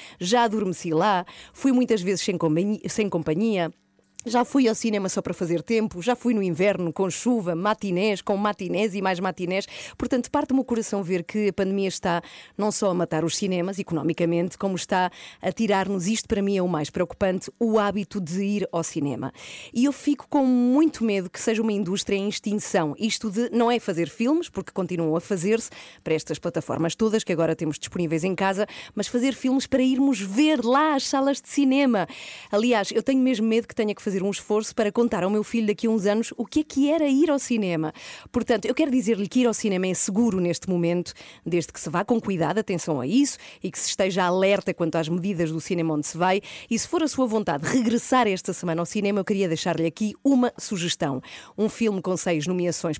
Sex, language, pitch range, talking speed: female, Portuguese, 175-235 Hz, 215 wpm